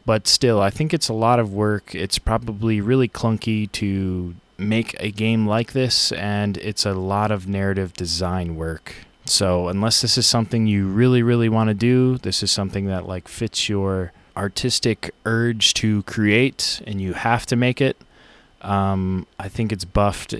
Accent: American